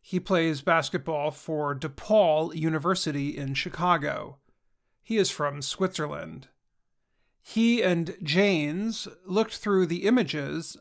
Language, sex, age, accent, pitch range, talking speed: English, male, 40-59, American, 155-195 Hz, 105 wpm